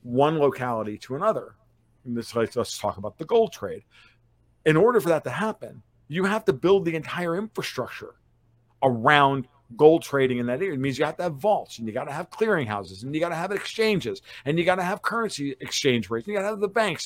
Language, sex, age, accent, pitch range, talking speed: English, male, 50-69, American, 120-175 Hz, 235 wpm